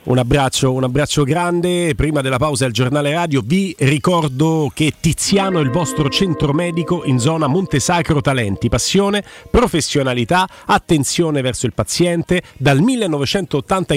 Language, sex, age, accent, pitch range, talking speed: Italian, male, 40-59, native, 130-185 Hz, 135 wpm